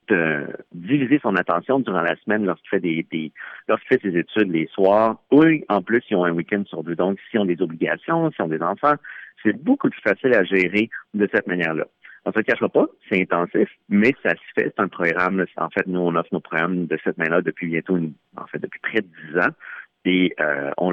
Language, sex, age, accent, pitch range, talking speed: French, male, 50-69, French, 85-115 Hz, 225 wpm